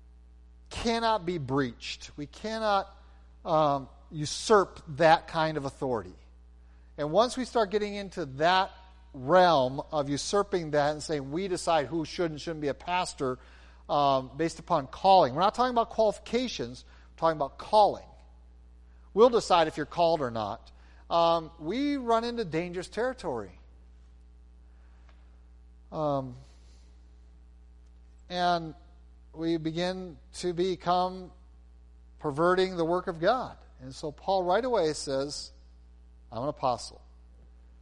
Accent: American